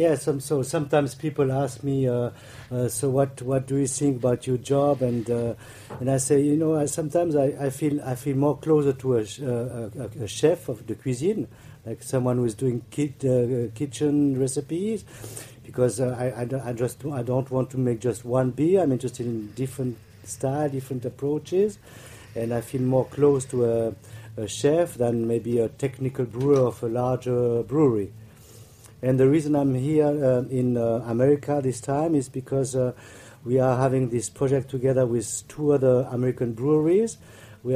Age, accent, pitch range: 50-69, French, 120-145 Hz